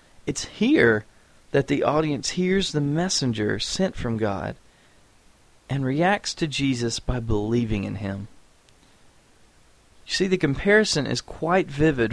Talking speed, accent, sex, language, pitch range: 130 wpm, American, male, English, 110-150 Hz